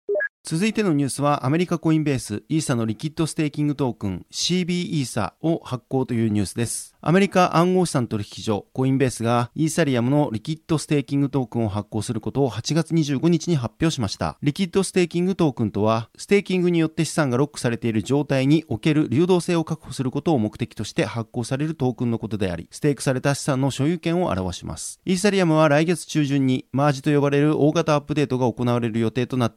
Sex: male